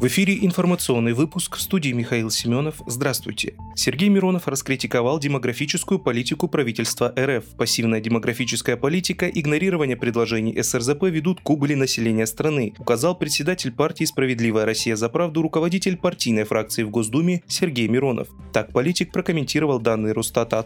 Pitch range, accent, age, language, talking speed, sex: 120-165 Hz, native, 30-49, Russian, 135 wpm, male